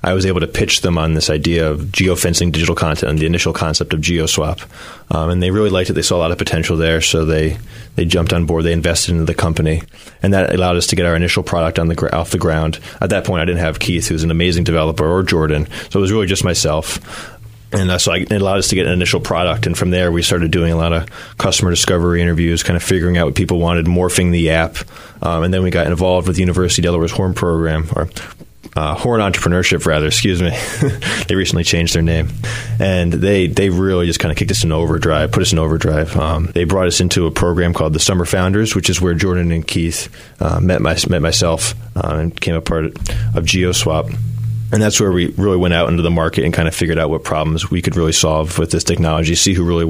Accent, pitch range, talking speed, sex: American, 80-95 Hz, 250 wpm, male